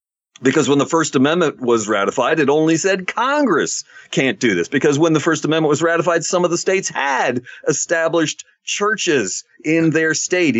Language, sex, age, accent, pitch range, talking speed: English, male, 50-69, American, 125-160 Hz, 175 wpm